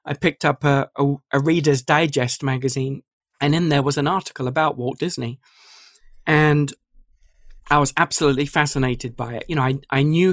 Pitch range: 135-160 Hz